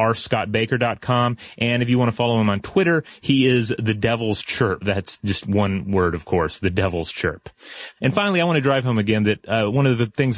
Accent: American